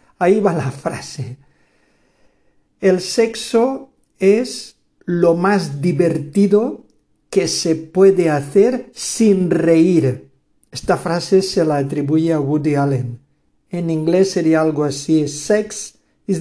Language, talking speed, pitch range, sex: Spanish, 115 wpm, 160-205 Hz, male